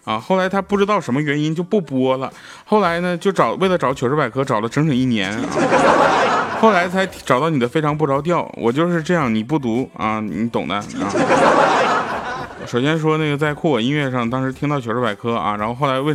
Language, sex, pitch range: Chinese, male, 110-165 Hz